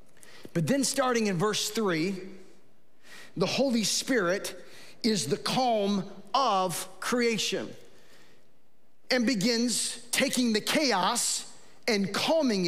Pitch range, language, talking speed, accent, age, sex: 200-280 Hz, English, 100 wpm, American, 40-59, male